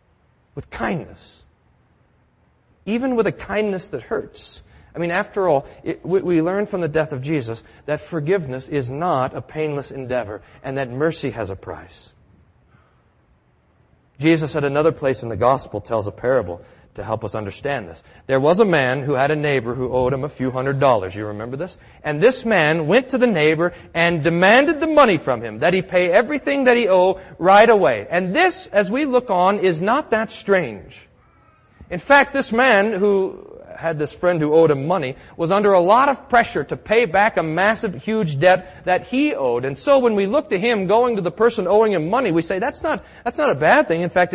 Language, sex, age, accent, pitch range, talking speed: English, male, 40-59, American, 150-235 Hz, 205 wpm